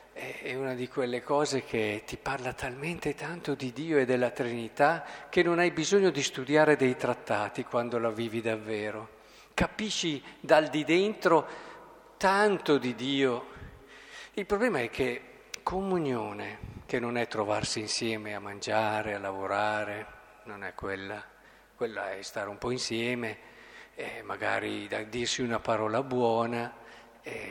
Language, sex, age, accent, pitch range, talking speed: Italian, male, 50-69, native, 115-160 Hz, 140 wpm